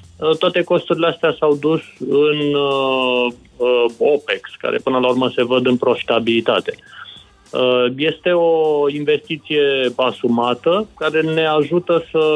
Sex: male